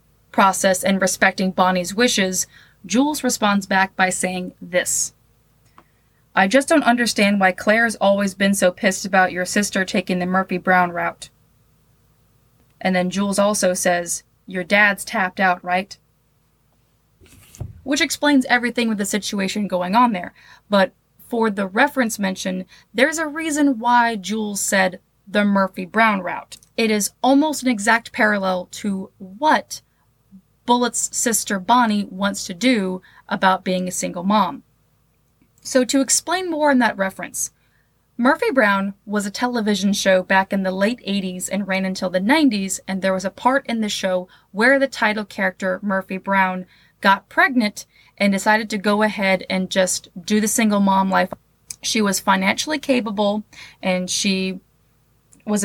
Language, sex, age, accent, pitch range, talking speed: English, female, 20-39, American, 185-225 Hz, 150 wpm